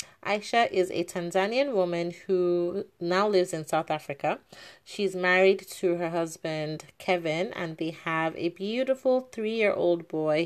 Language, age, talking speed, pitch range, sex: English, 30-49, 140 wpm, 155-180 Hz, female